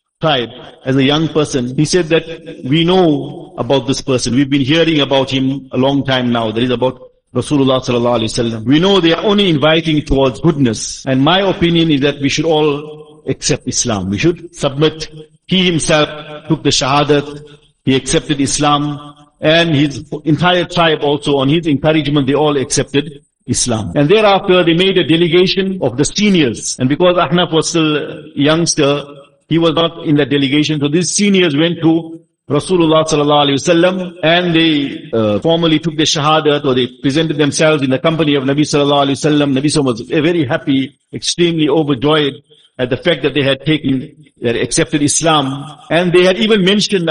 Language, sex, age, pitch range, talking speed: English, male, 50-69, 140-165 Hz, 180 wpm